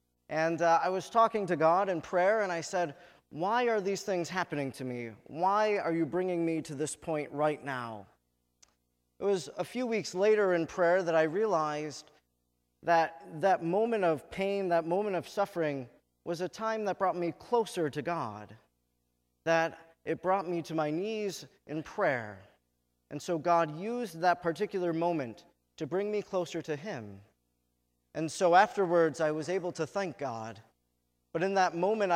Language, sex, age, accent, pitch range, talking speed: English, male, 30-49, American, 130-185 Hz, 175 wpm